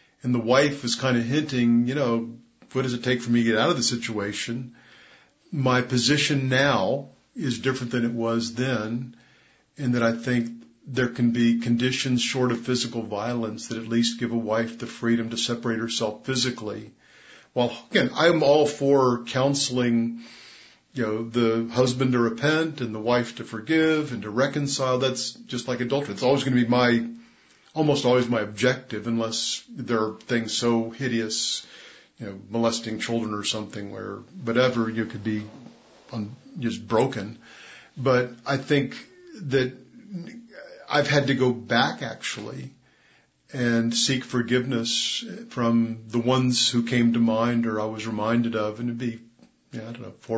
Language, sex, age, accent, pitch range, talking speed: English, male, 50-69, American, 115-130 Hz, 165 wpm